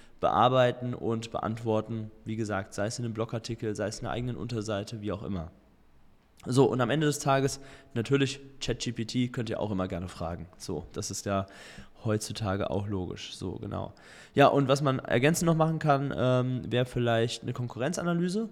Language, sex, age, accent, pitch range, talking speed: German, male, 20-39, German, 110-140 Hz, 175 wpm